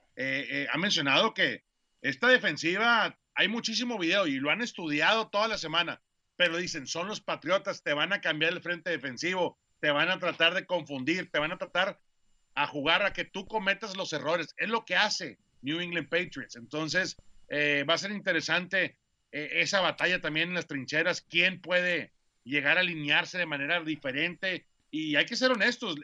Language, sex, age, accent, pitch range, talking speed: Spanish, male, 40-59, Mexican, 150-210 Hz, 185 wpm